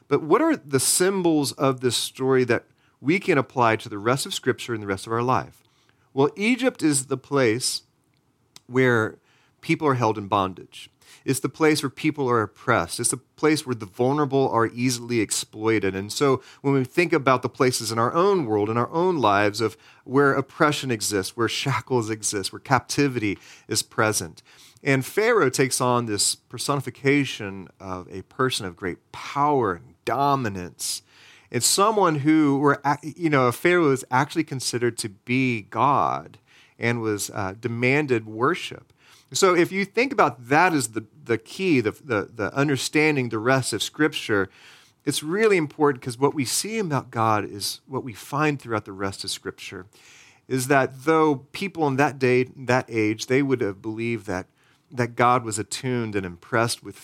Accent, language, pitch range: American, English, 110-145 Hz